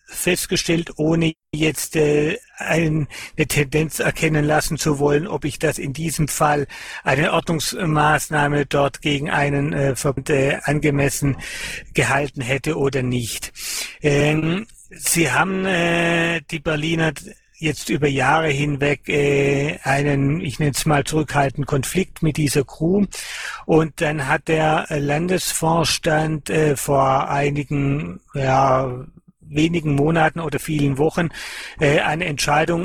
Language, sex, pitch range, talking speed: German, male, 140-160 Hz, 120 wpm